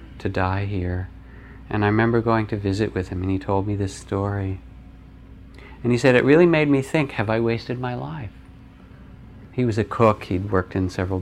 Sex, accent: male, American